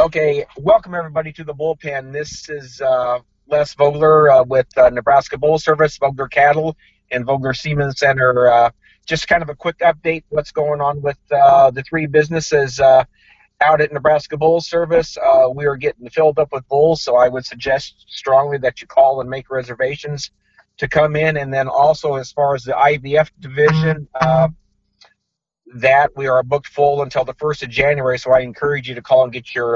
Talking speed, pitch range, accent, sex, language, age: 190 wpm, 125-155 Hz, American, male, English, 40-59